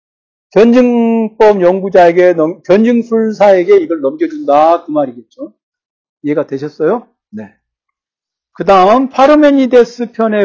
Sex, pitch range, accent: male, 170-240 Hz, native